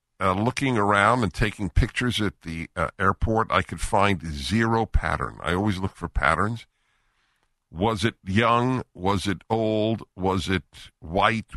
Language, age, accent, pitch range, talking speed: English, 50-69, American, 75-100 Hz, 150 wpm